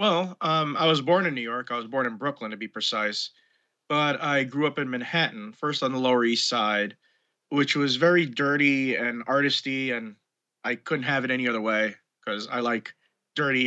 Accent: American